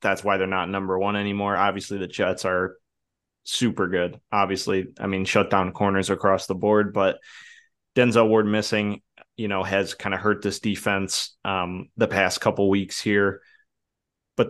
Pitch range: 95-105 Hz